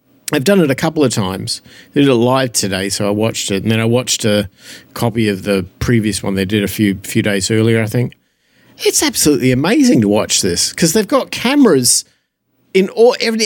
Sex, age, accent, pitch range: male, 50-69, Australian, 115-165 Hz